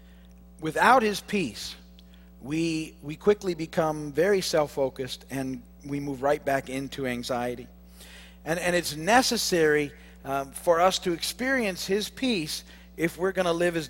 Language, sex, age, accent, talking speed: English, male, 50-69, American, 145 wpm